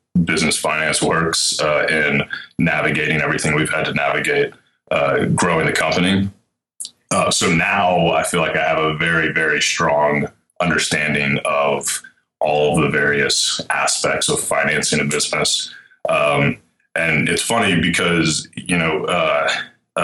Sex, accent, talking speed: male, American, 135 wpm